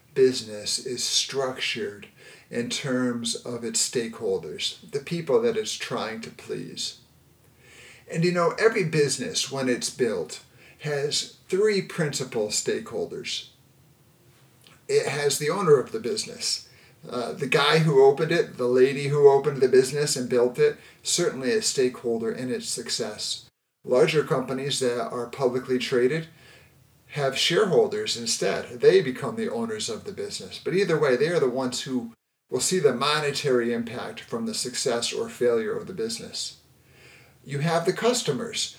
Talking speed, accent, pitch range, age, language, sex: 150 wpm, American, 125-210 Hz, 50-69, English, male